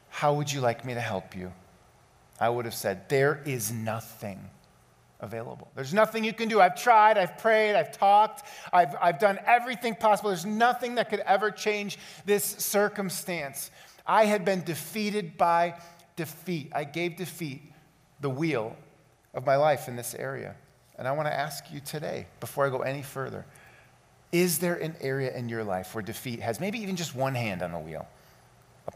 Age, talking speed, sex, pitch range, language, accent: 40-59, 180 wpm, male, 140-205 Hz, English, American